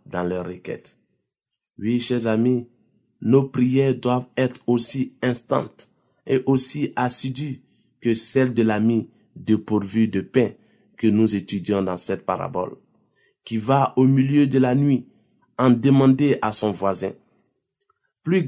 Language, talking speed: French, 135 wpm